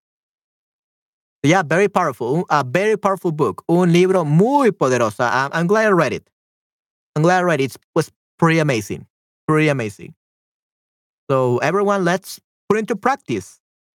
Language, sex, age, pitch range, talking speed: Spanish, male, 30-49, 155-200 Hz, 145 wpm